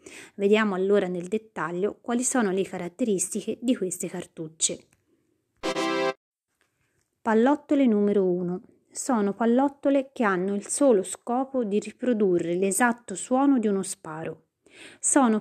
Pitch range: 185-250 Hz